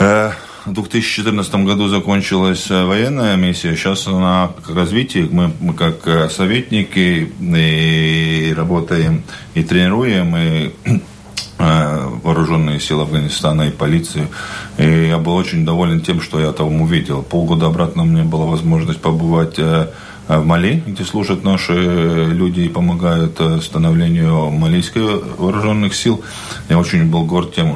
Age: 40-59